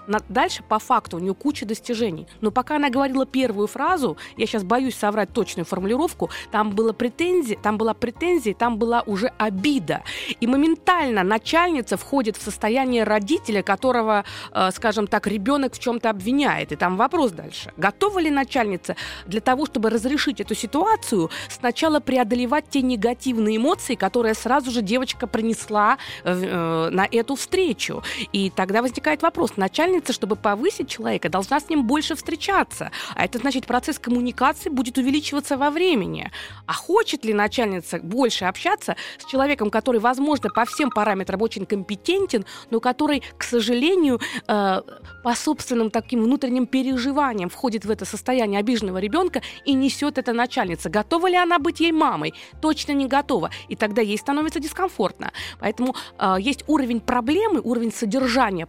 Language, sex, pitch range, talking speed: Russian, female, 215-285 Hz, 150 wpm